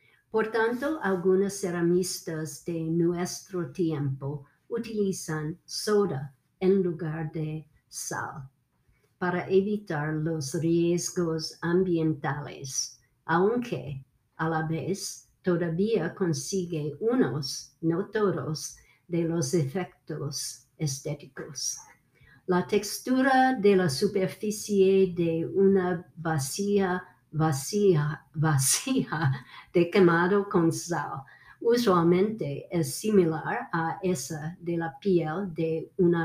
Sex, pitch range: female, 150-185 Hz